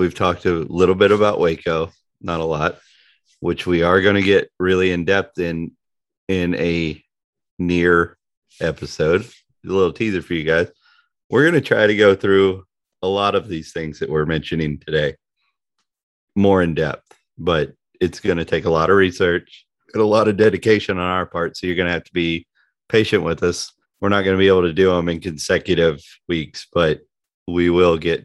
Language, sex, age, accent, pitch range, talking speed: English, male, 30-49, American, 80-100 Hz, 195 wpm